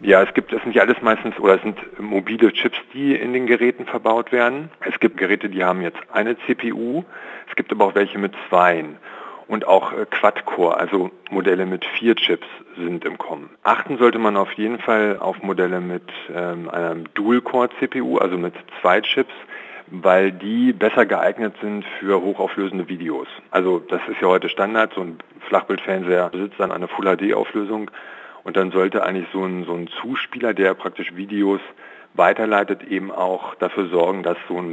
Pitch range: 90-115 Hz